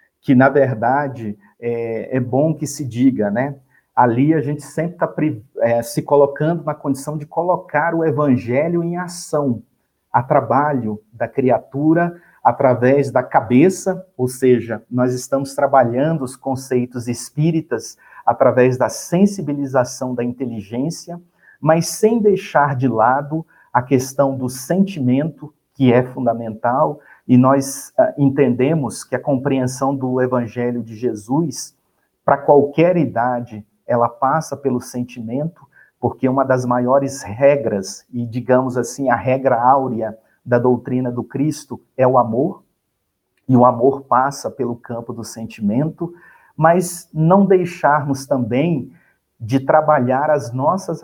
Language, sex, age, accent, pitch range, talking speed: Portuguese, male, 50-69, Brazilian, 125-150 Hz, 130 wpm